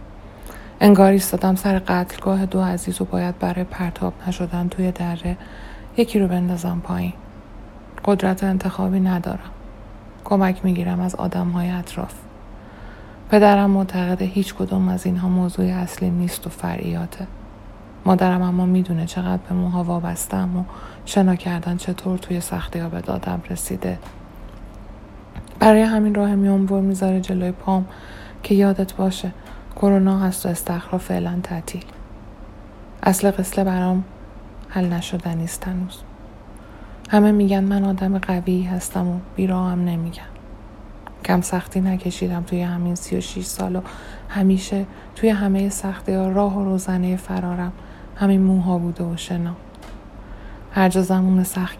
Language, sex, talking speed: Persian, female, 130 wpm